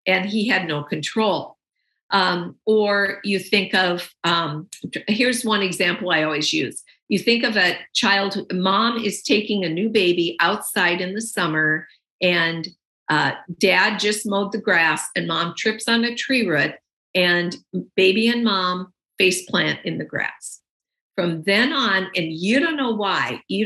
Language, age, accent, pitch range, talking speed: English, 50-69, American, 175-225 Hz, 160 wpm